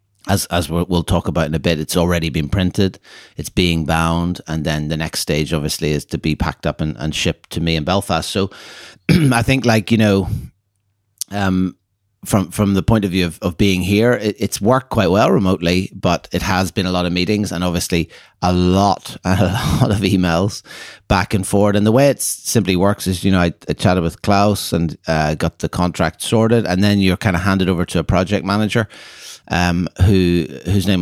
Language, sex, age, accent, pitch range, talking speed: English, male, 30-49, Irish, 85-100 Hz, 215 wpm